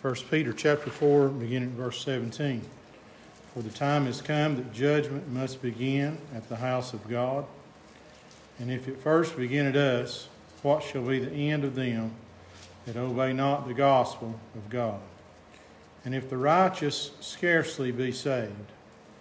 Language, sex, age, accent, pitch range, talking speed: English, male, 50-69, American, 120-145 Hz, 155 wpm